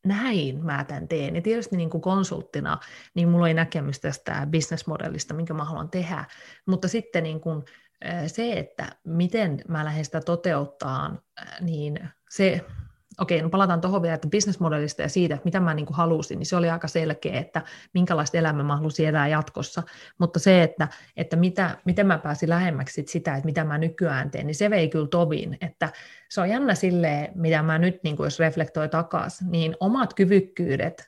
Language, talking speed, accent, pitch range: Finnish, 180 wpm, native, 160-185 Hz